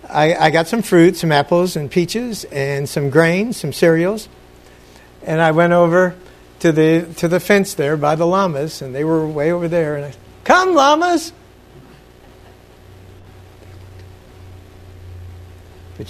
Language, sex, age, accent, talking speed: English, male, 60-79, American, 145 wpm